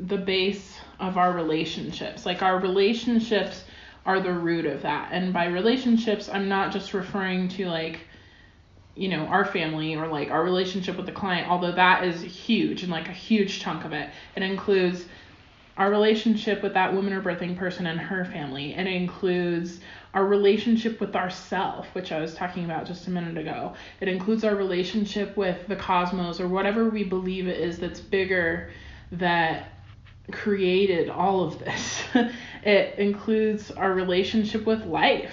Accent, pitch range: American, 170-195 Hz